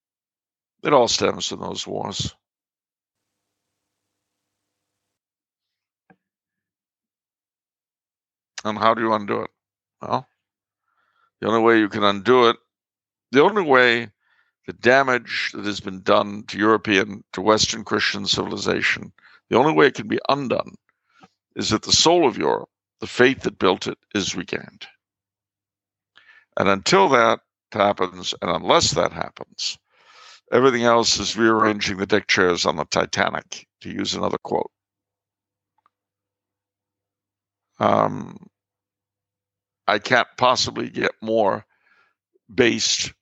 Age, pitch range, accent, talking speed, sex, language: 60-79, 100-110 Hz, American, 115 wpm, male, English